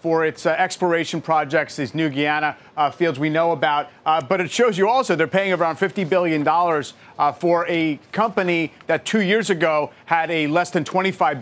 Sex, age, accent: male, 40-59, American